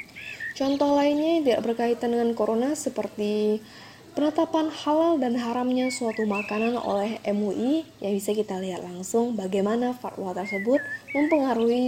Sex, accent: female, native